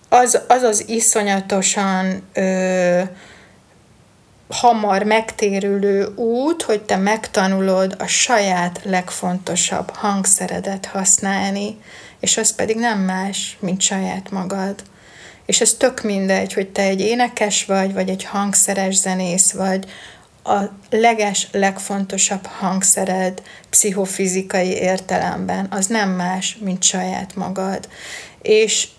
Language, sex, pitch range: Hungarian, female, 185-210 Hz